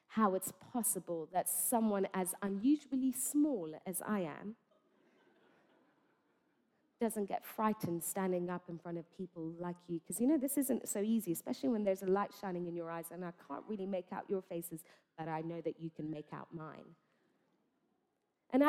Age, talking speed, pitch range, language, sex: 30-49, 180 wpm, 180-260 Hz, English, female